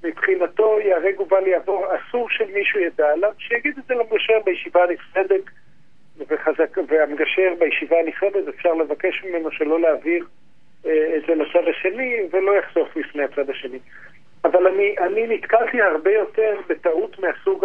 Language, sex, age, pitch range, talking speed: Hebrew, male, 50-69, 165-250 Hz, 135 wpm